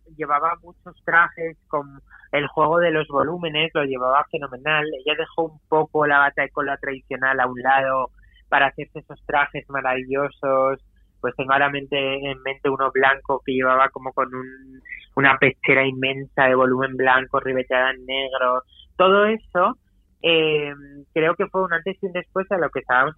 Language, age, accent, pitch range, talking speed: Spanish, 20-39, Spanish, 135-160 Hz, 170 wpm